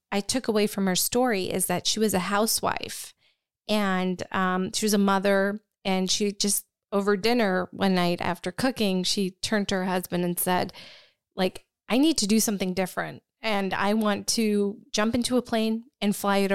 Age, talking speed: 20-39, 185 wpm